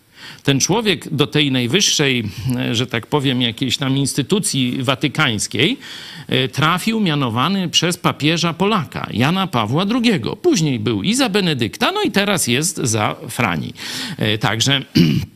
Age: 50-69